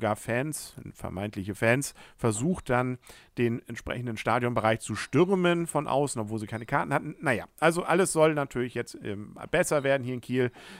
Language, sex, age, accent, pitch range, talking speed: German, male, 50-69, German, 105-135 Hz, 155 wpm